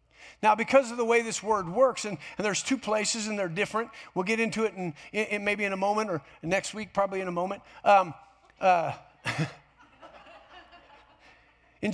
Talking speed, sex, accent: 170 wpm, male, American